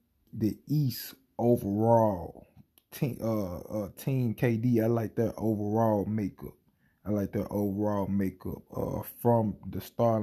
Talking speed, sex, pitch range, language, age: 130 wpm, male, 100-115 Hz, English, 20-39